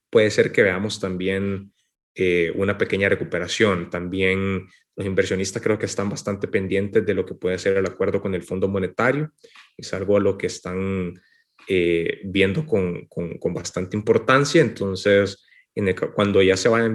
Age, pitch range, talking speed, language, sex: 20-39, 90-105 Hz, 170 wpm, Spanish, male